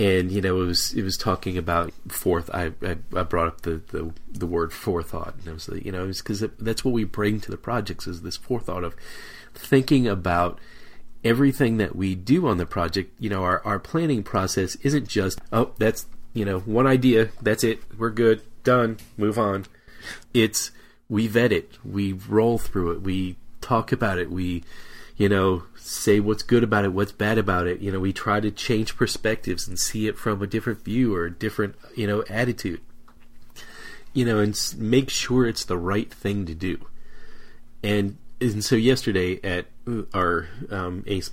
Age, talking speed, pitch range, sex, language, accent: 30-49, 190 wpm, 90-115 Hz, male, English, American